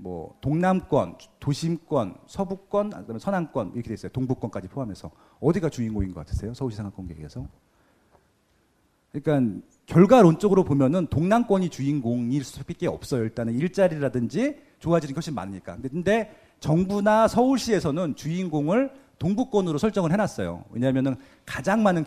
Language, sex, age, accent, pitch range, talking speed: English, male, 40-59, Korean, 125-195 Hz, 110 wpm